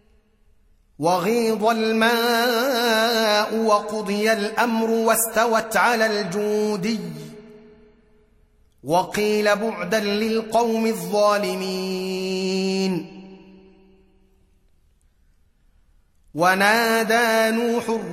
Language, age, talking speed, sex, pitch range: Arabic, 30-49, 45 wpm, male, 185-215 Hz